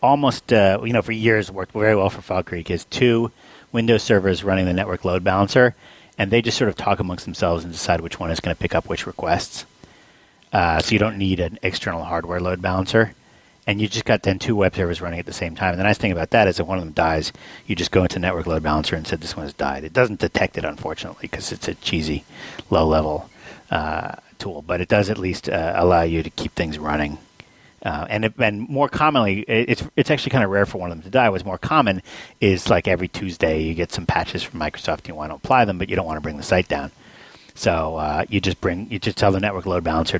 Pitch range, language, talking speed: 85-105 Hz, English, 260 wpm